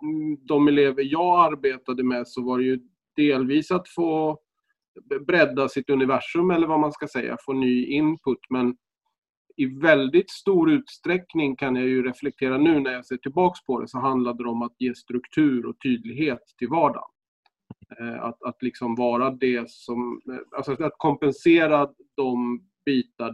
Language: Swedish